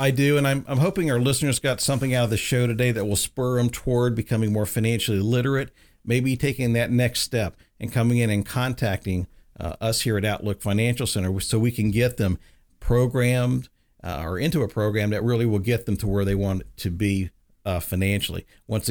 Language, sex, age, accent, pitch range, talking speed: English, male, 50-69, American, 100-120 Hz, 210 wpm